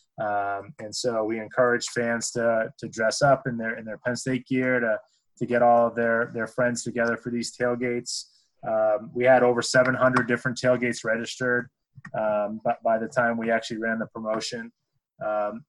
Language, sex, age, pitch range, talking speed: English, male, 20-39, 110-125 Hz, 185 wpm